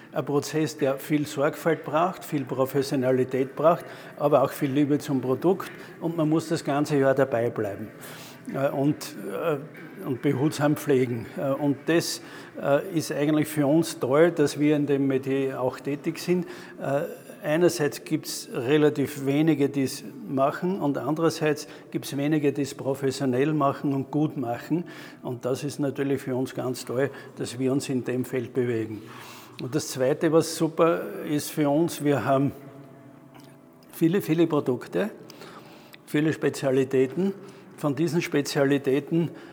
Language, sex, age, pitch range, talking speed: German, male, 50-69, 130-150 Hz, 145 wpm